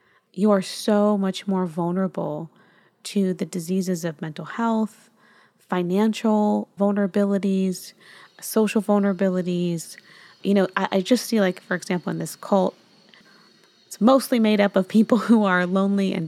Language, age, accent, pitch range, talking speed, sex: English, 20-39, American, 180-210 Hz, 140 wpm, female